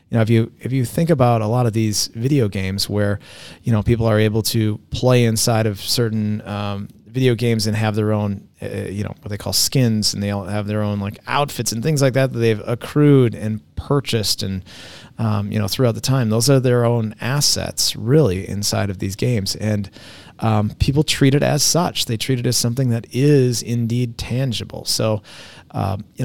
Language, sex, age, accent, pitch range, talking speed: English, male, 30-49, American, 100-120 Hz, 210 wpm